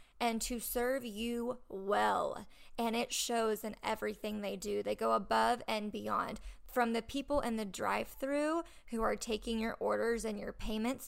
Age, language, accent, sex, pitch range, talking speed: 20-39, English, American, female, 215-255 Hz, 170 wpm